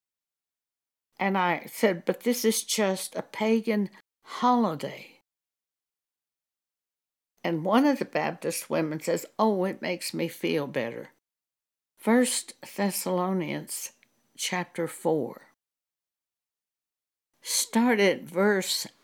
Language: English